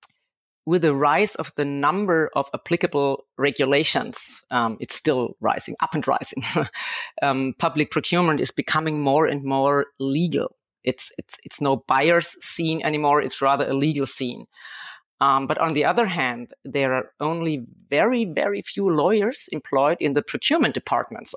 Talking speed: 155 wpm